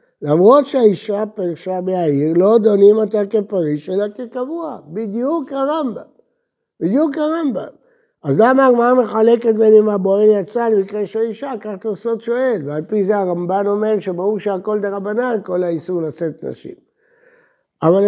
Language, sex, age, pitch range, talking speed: Hebrew, male, 60-79, 180-250 Hz, 135 wpm